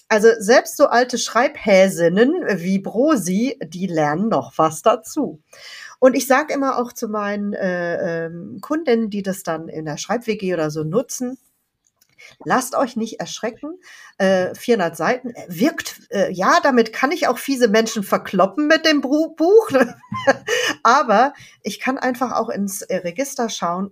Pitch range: 180-260 Hz